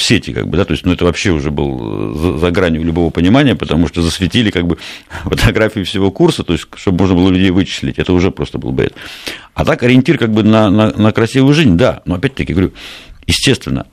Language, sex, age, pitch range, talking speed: Russian, male, 50-69, 80-105 Hz, 225 wpm